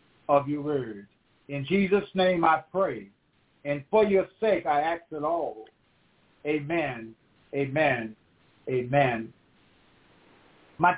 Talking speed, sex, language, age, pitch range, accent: 110 wpm, male, English, 60-79, 140-210 Hz, American